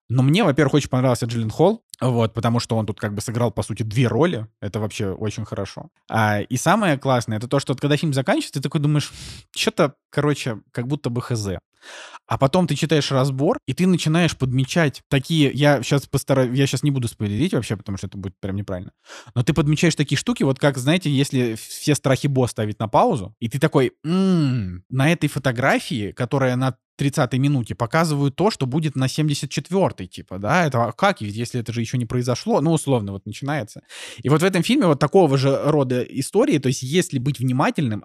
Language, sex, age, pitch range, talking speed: Russian, male, 20-39, 115-150 Hz, 200 wpm